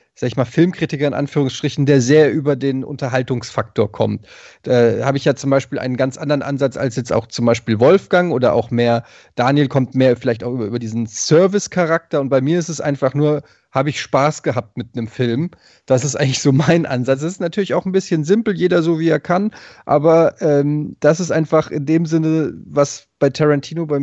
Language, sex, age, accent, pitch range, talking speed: German, male, 30-49, German, 140-180 Hz, 210 wpm